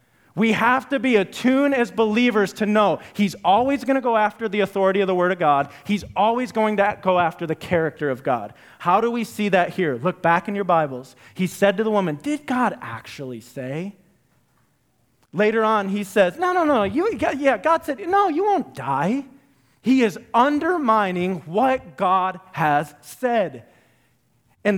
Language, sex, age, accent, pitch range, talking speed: English, male, 30-49, American, 140-215 Hz, 175 wpm